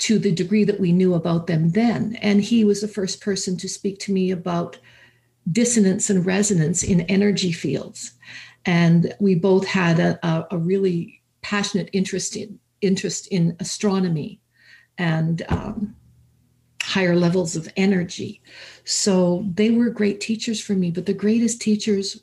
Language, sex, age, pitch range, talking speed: English, female, 50-69, 175-200 Hz, 150 wpm